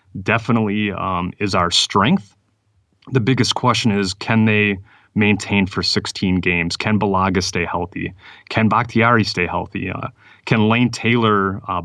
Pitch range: 95-110 Hz